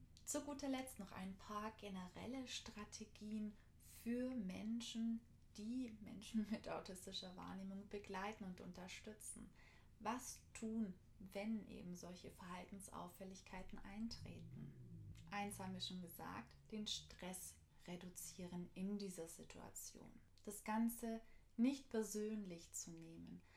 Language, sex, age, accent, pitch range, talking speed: German, female, 20-39, German, 185-220 Hz, 105 wpm